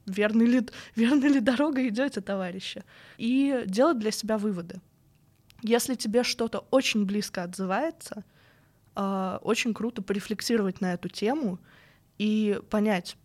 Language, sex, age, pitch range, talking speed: Russian, female, 20-39, 190-230 Hz, 115 wpm